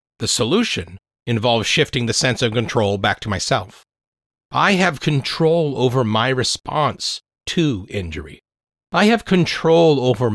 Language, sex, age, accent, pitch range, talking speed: English, male, 40-59, American, 110-155 Hz, 135 wpm